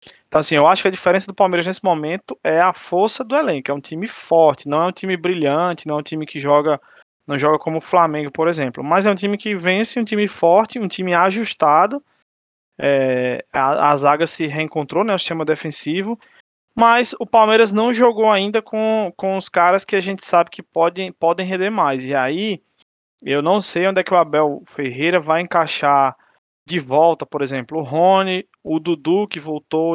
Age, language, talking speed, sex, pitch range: 20-39, Portuguese, 200 wpm, male, 150-195 Hz